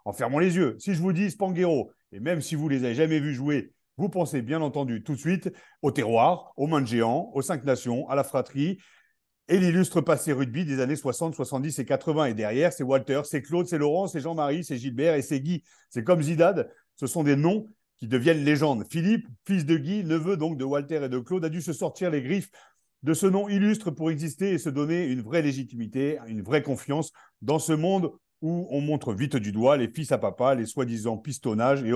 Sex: male